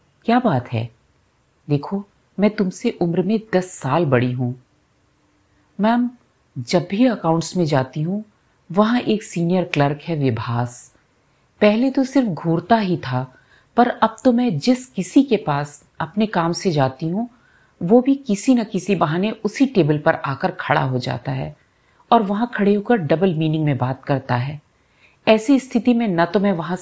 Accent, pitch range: native, 145-220 Hz